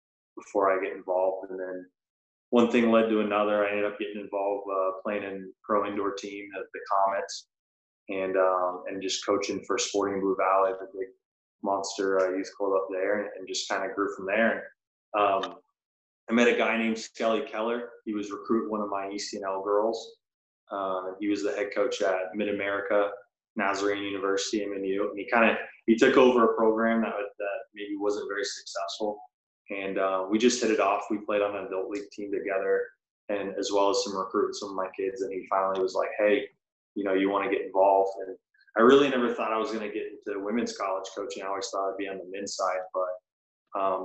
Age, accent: 20-39, American